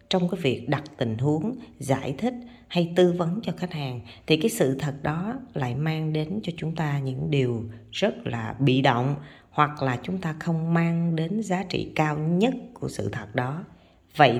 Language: Vietnamese